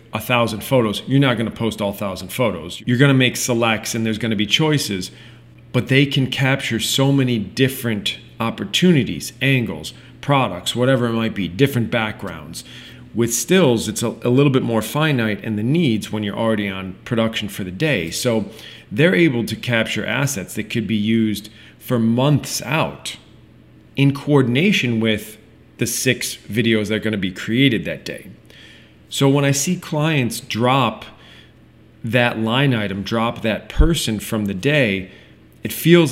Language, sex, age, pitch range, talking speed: English, male, 40-59, 110-130 Hz, 165 wpm